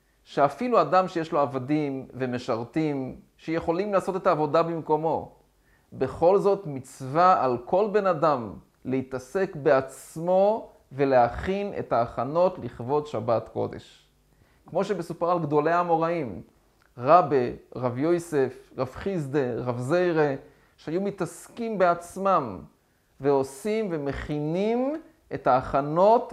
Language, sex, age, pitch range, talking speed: Hebrew, male, 30-49, 130-180 Hz, 105 wpm